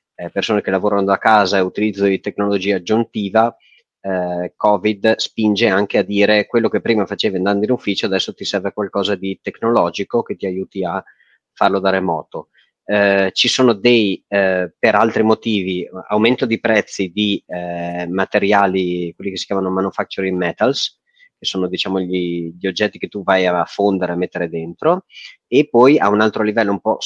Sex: male